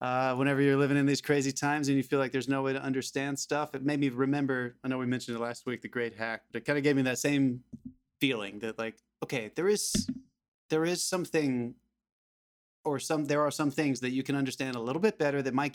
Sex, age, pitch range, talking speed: male, 20-39, 120-140 Hz, 250 wpm